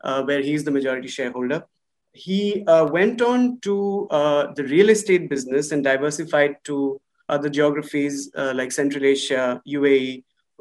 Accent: Indian